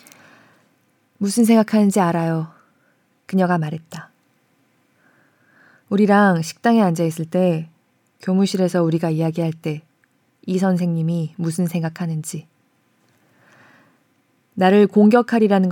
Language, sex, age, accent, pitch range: Korean, female, 20-39, native, 165-205 Hz